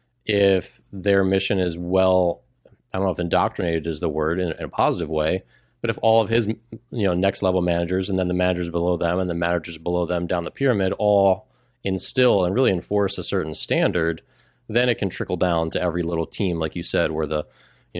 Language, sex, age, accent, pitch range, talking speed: English, male, 30-49, American, 85-115 Hz, 215 wpm